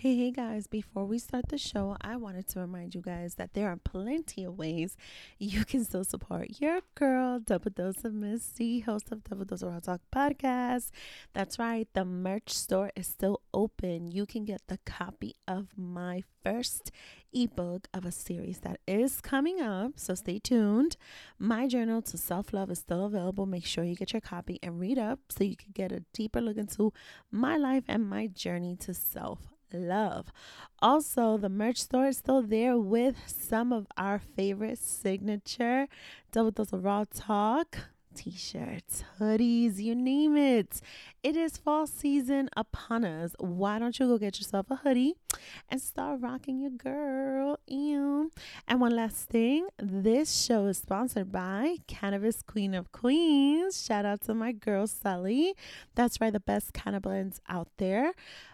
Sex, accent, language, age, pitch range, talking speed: female, American, English, 30-49, 195-255 Hz, 170 wpm